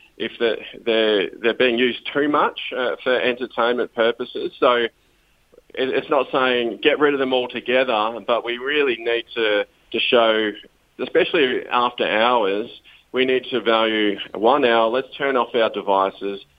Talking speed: 150 wpm